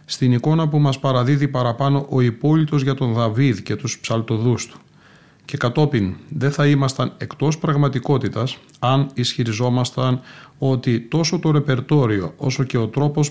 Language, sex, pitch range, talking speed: Greek, male, 115-135 Hz, 145 wpm